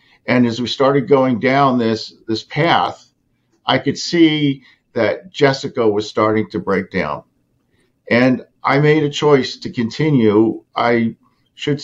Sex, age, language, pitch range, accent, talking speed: male, 50-69, English, 110-140 Hz, American, 140 wpm